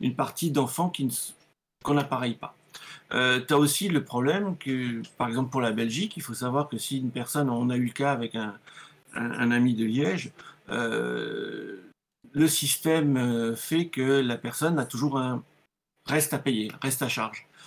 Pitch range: 125-145 Hz